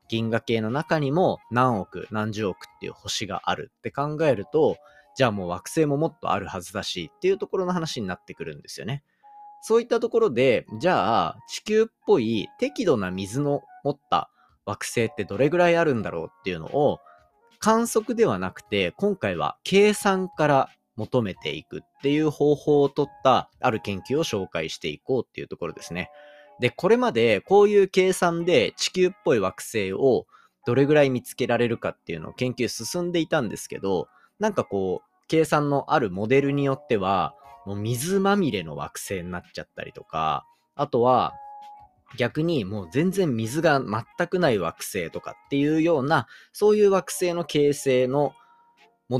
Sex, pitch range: male, 120-200 Hz